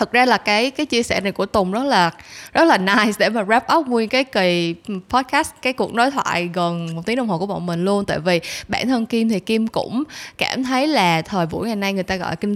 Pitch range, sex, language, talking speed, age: 180-245 Hz, female, Vietnamese, 265 wpm, 20-39